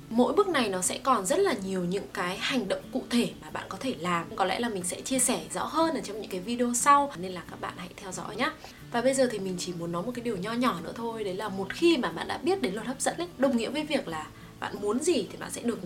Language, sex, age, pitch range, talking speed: English, female, 20-39, 185-255 Hz, 315 wpm